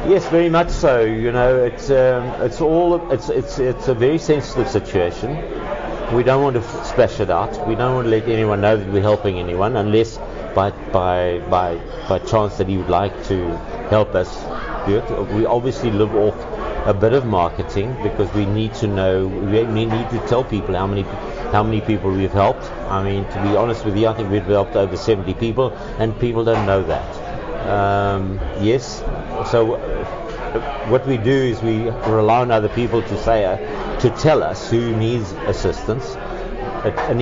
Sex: male